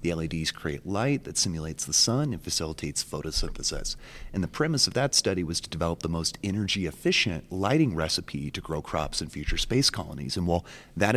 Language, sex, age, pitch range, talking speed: English, male, 30-49, 85-125 Hz, 190 wpm